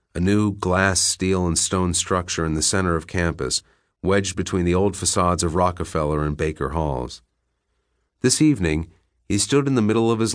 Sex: male